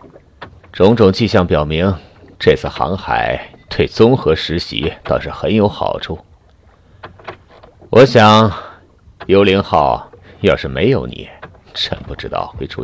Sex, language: male, Chinese